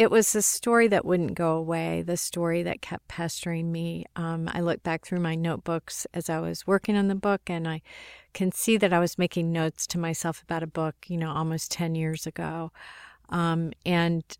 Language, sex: English, female